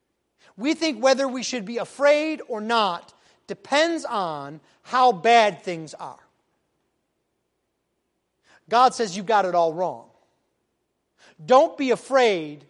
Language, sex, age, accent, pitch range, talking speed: English, male, 30-49, American, 200-275 Hz, 120 wpm